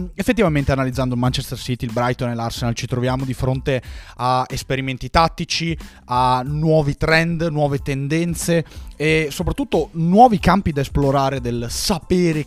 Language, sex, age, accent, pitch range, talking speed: Italian, male, 30-49, native, 120-155 Hz, 135 wpm